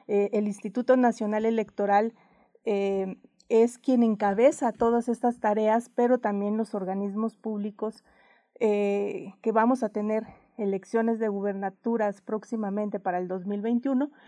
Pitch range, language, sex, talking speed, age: 205-240 Hz, Spanish, female, 120 wpm, 40-59